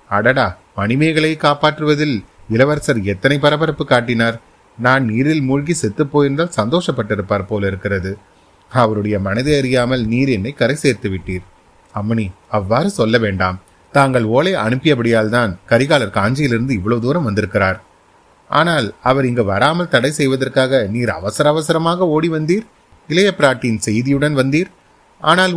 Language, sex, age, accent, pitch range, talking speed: Tamil, male, 30-49, native, 110-145 Hz, 120 wpm